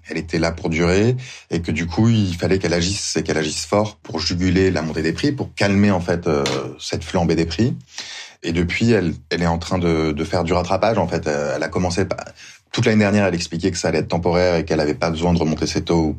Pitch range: 80-100 Hz